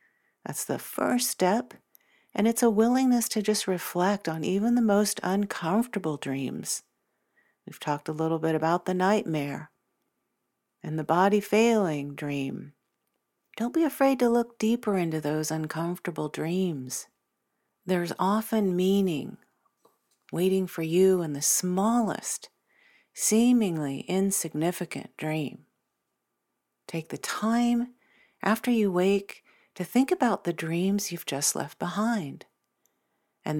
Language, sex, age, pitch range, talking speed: English, female, 50-69, 160-215 Hz, 120 wpm